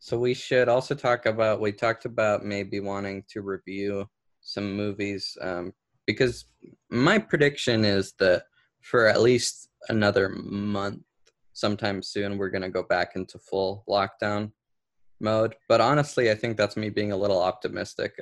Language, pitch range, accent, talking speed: English, 100-115 Hz, American, 155 wpm